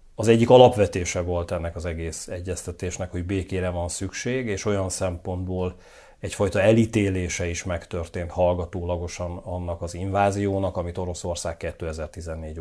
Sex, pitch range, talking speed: male, 85-105 Hz, 125 wpm